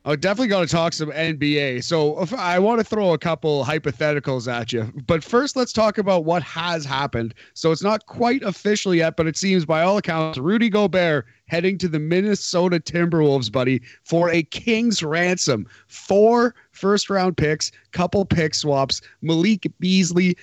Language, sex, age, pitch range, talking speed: English, male, 30-49, 130-175 Hz, 175 wpm